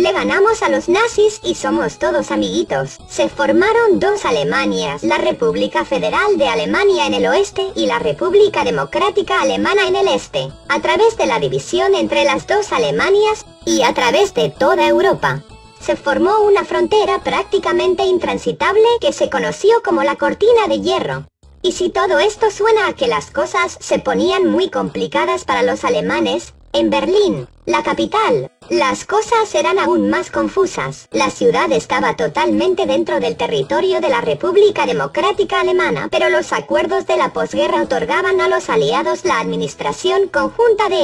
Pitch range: 335-420 Hz